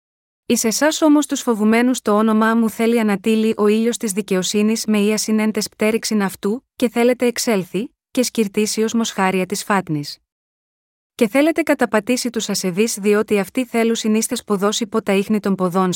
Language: Greek